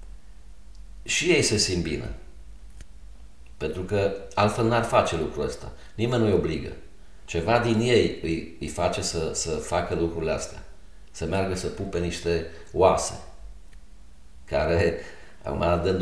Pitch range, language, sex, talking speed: 80-105 Hz, Romanian, male, 125 wpm